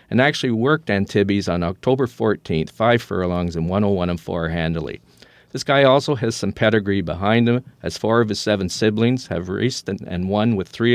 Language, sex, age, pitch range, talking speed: English, male, 50-69, 95-120 Hz, 190 wpm